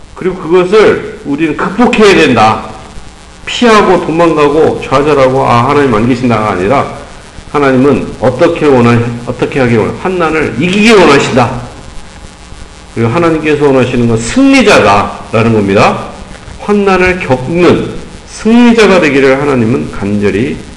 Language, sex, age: Korean, male, 50-69